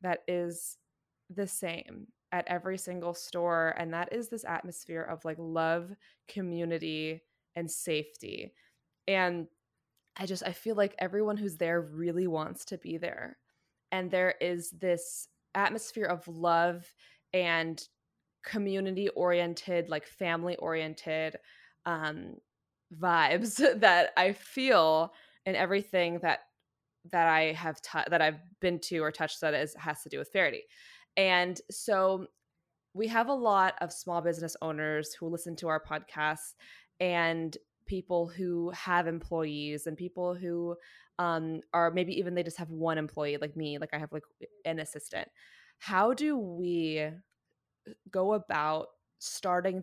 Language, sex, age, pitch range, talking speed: English, female, 20-39, 160-185 Hz, 140 wpm